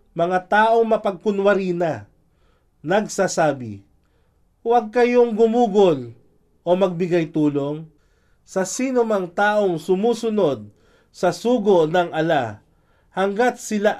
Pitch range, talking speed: 155-210 Hz, 95 wpm